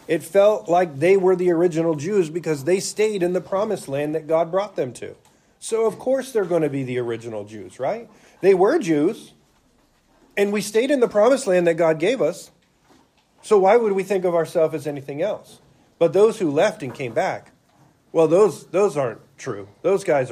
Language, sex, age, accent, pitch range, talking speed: English, male, 40-59, American, 135-190 Hz, 205 wpm